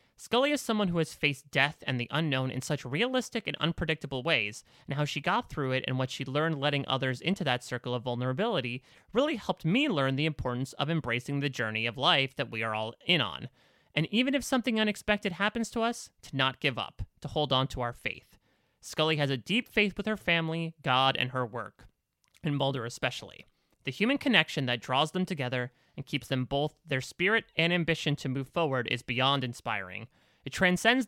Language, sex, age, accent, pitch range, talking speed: English, male, 30-49, American, 125-170 Hz, 205 wpm